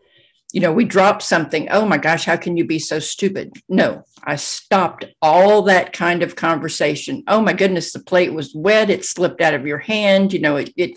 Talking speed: 215 wpm